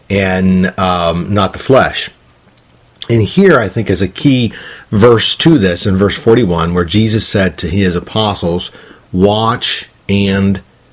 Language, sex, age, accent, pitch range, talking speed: English, male, 40-59, American, 95-125 Hz, 145 wpm